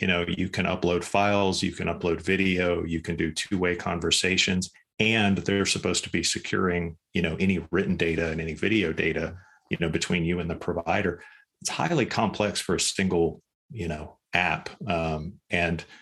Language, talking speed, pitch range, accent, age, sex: English, 185 wpm, 80-95 Hz, American, 40-59, male